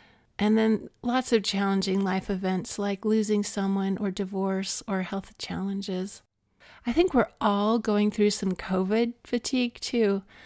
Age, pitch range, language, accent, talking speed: 30-49, 195-225 Hz, English, American, 145 wpm